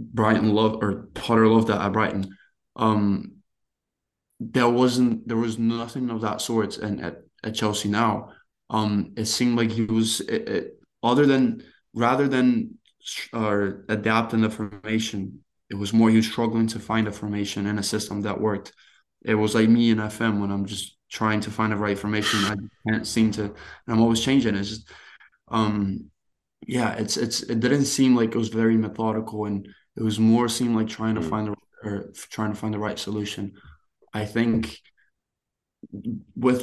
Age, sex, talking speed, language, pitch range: 20-39, male, 180 wpm, English, 105-115 Hz